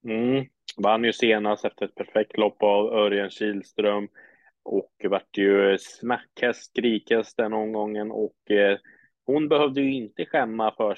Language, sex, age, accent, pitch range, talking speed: Swedish, male, 20-39, Norwegian, 95-110 Hz, 140 wpm